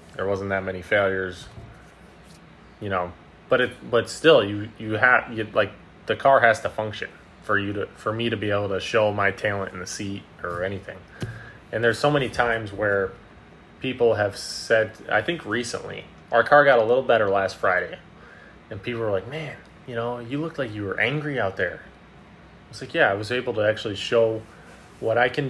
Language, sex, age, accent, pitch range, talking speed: English, male, 20-39, American, 100-120 Hz, 200 wpm